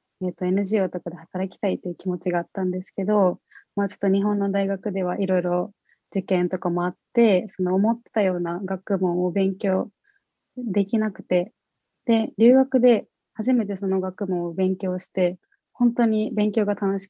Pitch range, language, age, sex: 180-220 Hz, Japanese, 20-39, female